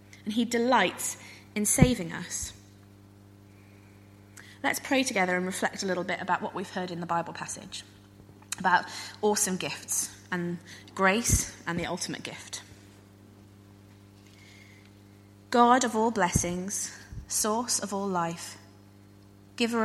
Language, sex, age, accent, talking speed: English, female, 20-39, British, 120 wpm